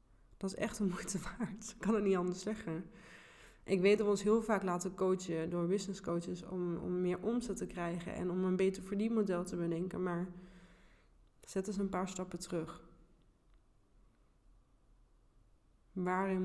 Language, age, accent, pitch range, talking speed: Dutch, 20-39, Dutch, 175-195 Hz, 165 wpm